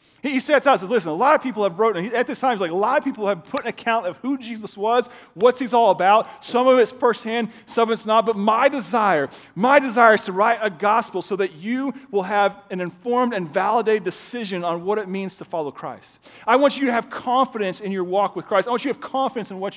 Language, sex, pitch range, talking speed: English, male, 195-250 Hz, 265 wpm